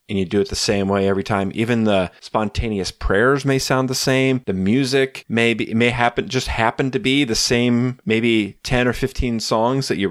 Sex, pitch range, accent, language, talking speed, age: male, 95-125 Hz, American, English, 215 wpm, 30-49